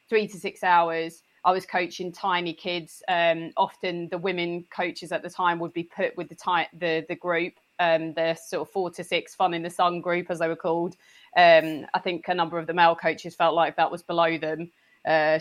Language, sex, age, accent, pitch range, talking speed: English, female, 30-49, British, 165-185 Hz, 230 wpm